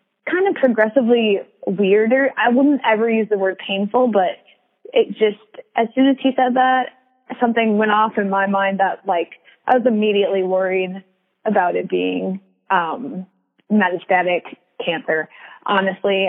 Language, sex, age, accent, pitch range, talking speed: English, female, 20-39, American, 190-245 Hz, 145 wpm